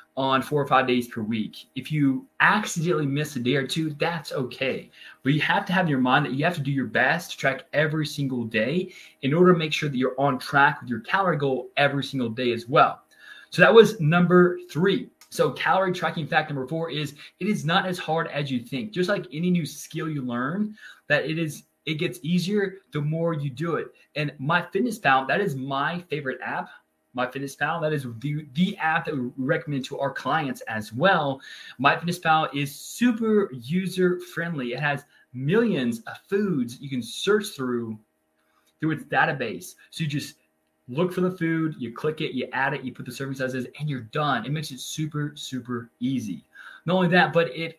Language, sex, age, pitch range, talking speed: English, male, 20-39, 130-175 Hz, 205 wpm